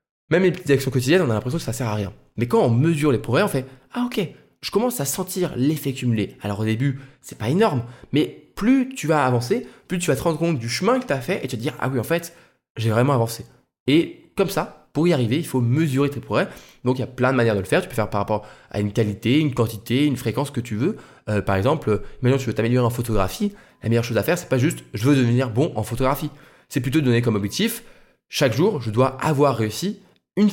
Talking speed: 285 wpm